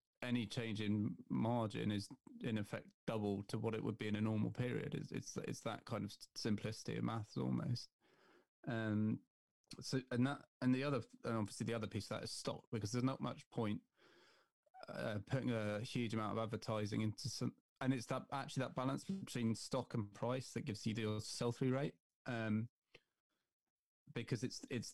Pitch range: 110-130 Hz